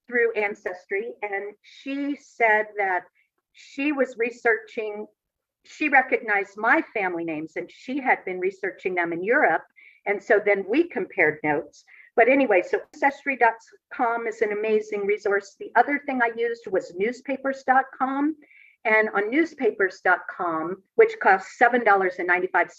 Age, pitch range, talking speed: 50-69, 200-275 Hz, 125 wpm